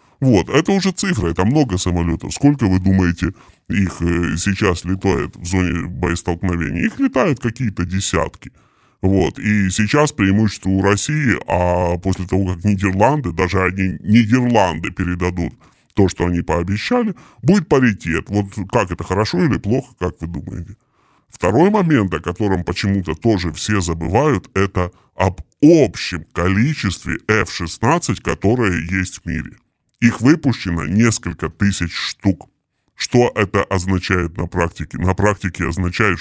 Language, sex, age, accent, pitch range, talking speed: Russian, female, 20-39, native, 85-110 Hz, 135 wpm